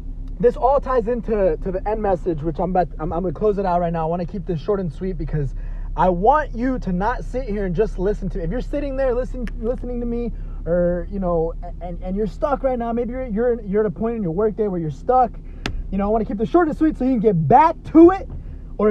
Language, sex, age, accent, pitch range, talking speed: English, male, 20-39, American, 195-265 Hz, 275 wpm